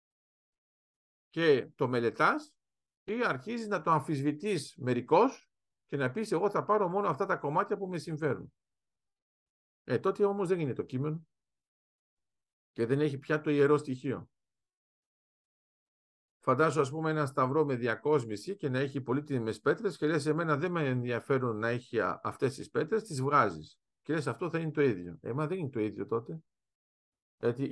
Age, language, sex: 50-69, Greek, male